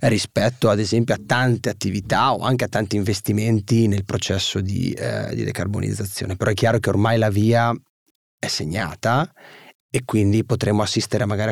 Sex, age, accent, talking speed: male, 30-49, native, 160 wpm